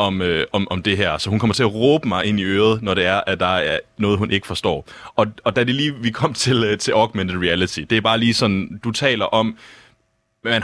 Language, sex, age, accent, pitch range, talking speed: Danish, male, 30-49, native, 95-120 Hz, 265 wpm